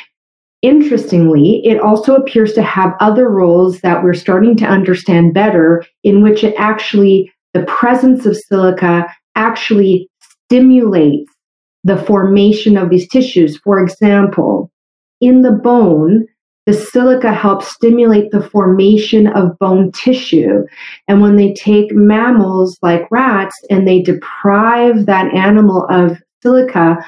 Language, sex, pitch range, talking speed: English, female, 180-220 Hz, 125 wpm